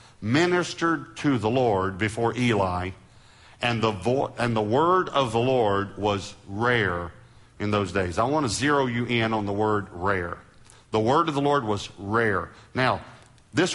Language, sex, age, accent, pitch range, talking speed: English, male, 50-69, American, 100-125 Hz, 170 wpm